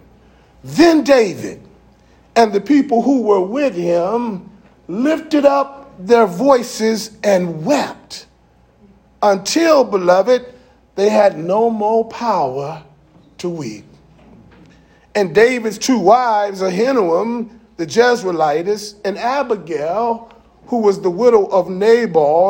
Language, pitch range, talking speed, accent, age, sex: English, 190-245 Hz, 105 wpm, American, 40-59, male